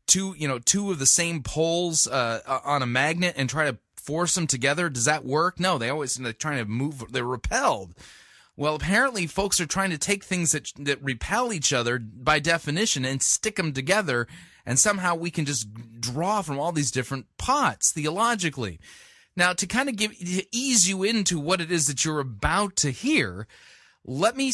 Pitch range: 130-175 Hz